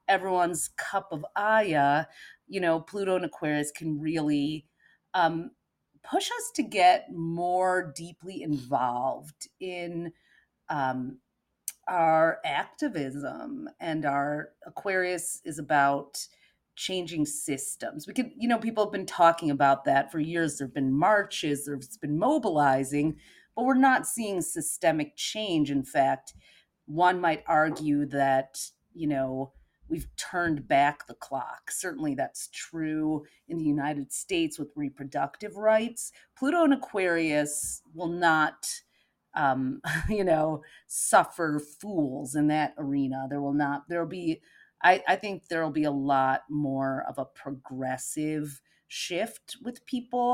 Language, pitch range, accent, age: English, 145-185 Hz, American, 40-59